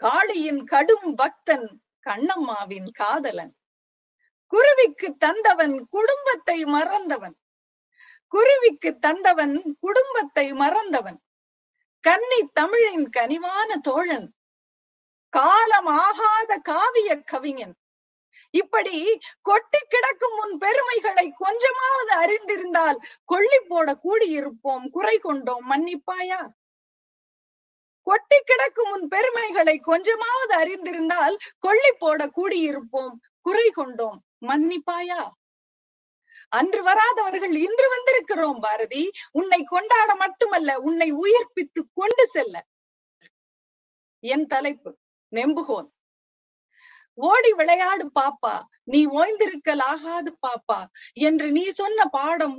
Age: 30-49